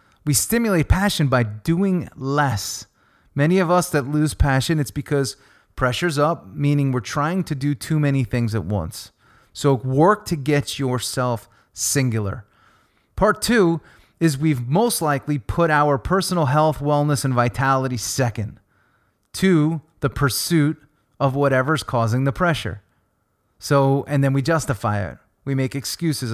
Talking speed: 145 wpm